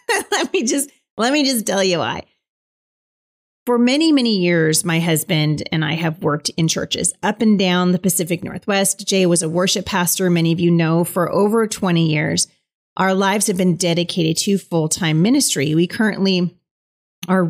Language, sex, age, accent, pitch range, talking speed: English, female, 30-49, American, 170-215 Hz, 175 wpm